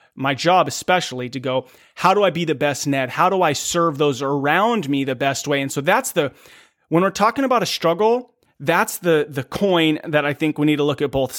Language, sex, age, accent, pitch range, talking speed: English, male, 30-49, American, 135-170 Hz, 235 wpm